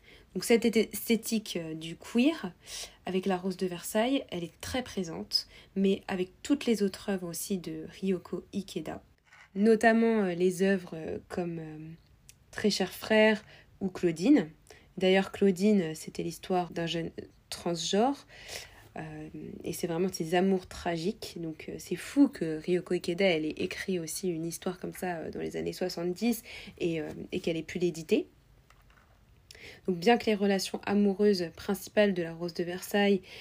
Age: 20-39